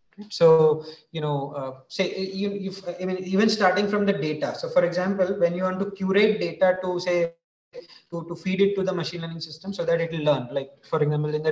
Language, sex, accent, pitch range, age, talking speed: English, male, Indian, 150-185 Hz, 20-39, 225 wpm